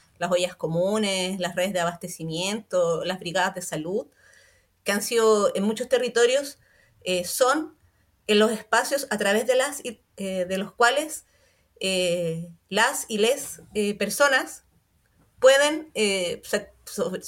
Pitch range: 185-250 Hz